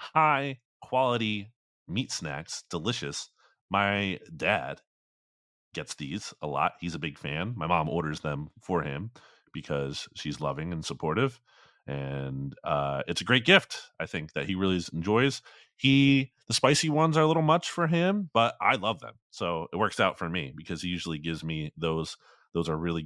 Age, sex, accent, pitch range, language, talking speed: 30-49, male, American, 85-120 Hz, English, 175 wpm